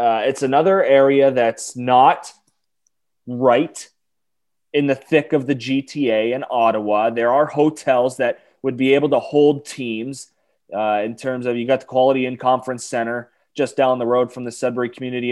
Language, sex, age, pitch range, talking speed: English, male, 20-39, 115-135 Hz, 170 wpm